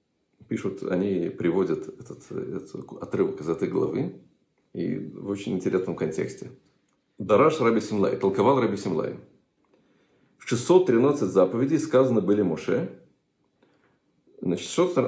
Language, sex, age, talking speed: Russian, male, 40-59, 105 wpm